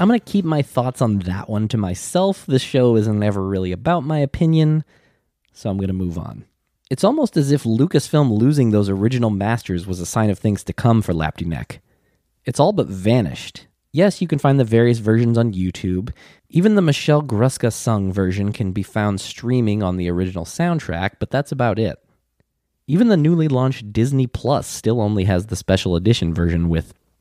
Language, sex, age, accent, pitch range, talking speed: English, male, 20-39, American, 95-135 Hz, 190 wpm